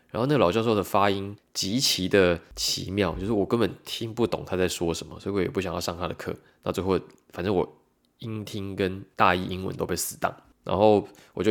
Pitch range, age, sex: 90-105 Hz, 20-39, male